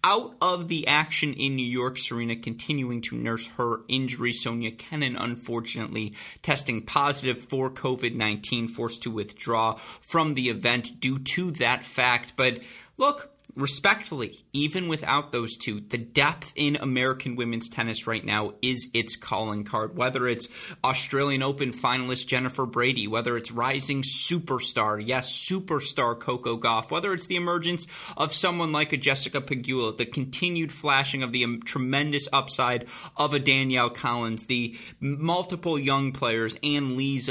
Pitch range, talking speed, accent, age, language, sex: 115-145 Hz, 150 wpm, American, 30-49, English, male